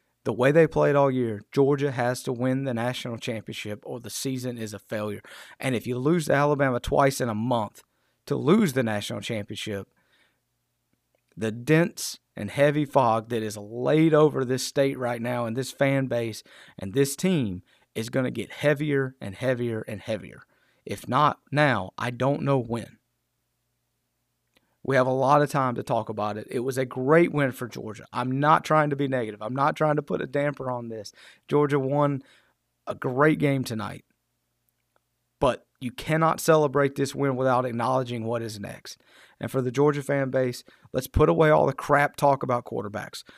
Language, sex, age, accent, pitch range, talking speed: English, male, 30-49, American, 110-140 Hz, 185 wpm